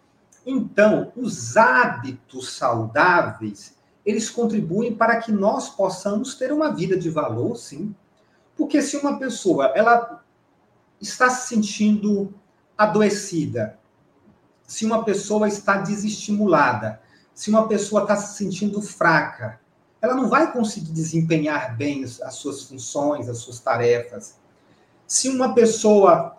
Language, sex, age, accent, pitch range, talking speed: Portuguese, male, 40-59, Brazilian, 155-220 Hz, 120 wpm